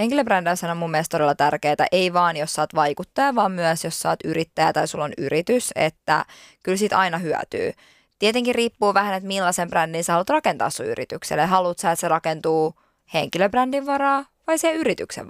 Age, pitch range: 20-39, 165-200 Hz